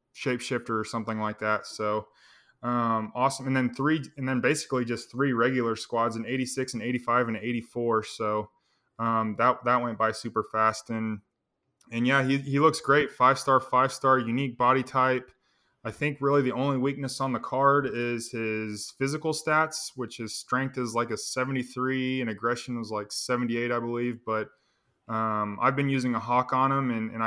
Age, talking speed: 20-39, 180 wpm